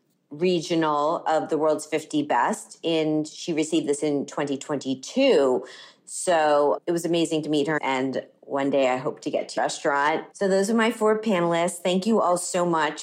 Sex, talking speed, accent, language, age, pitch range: female, 180 wpm, American, English, 30-49, 150-195 Hz